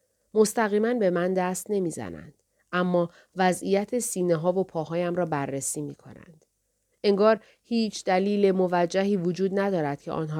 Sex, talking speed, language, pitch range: female, 135 wpm, Persian, 155-200 Hz